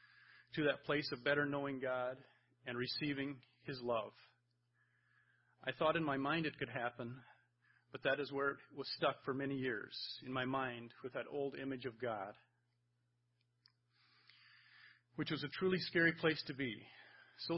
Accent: American